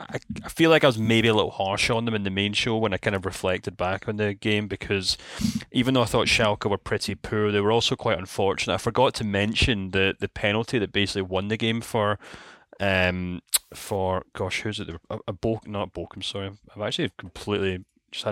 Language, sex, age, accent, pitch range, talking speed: English, male, 20-39, British, 95-110 Hz, 220 wpm